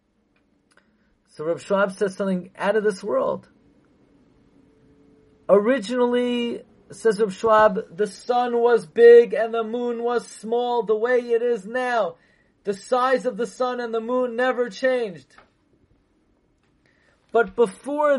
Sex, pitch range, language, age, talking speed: male, 205-250 Hz, English, 40-59, 130 wpm